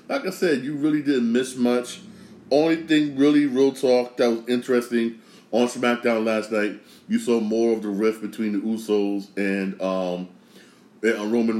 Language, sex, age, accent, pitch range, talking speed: English, male, 30-49, American, 105-120 Hz, 170 wpm